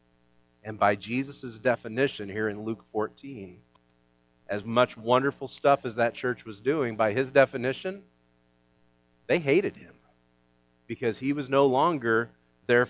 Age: 40-59